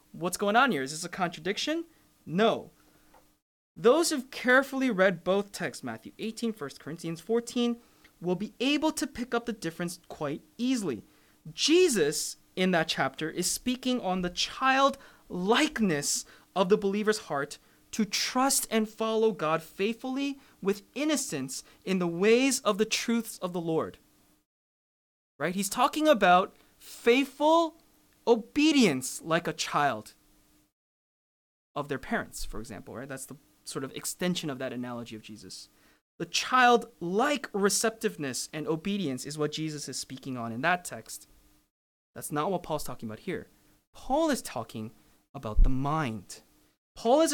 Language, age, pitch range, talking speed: English, 20-39, 145-235 Hz, 145 wpm